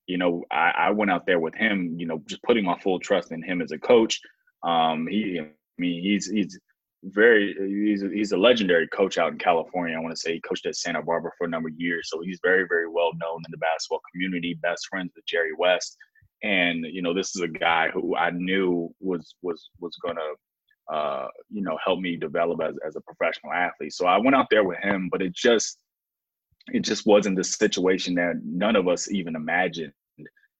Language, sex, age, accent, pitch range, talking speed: English, male, 20-39, American, 85-100 Hz, 220 wpm